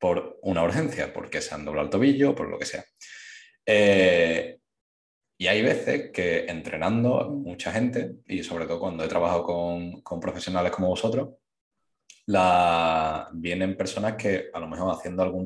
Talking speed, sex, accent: 165 wpm, male, Spanish